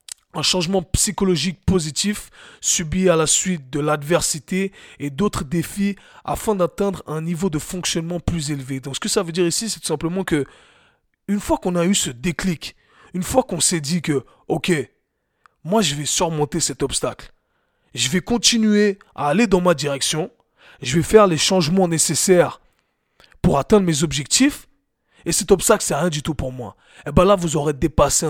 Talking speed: 180 wpm